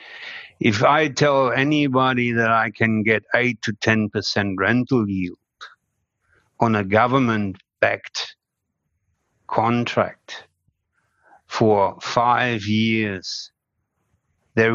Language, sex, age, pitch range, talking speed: English, male, 60-79, 115-160 Hz, 95 wpm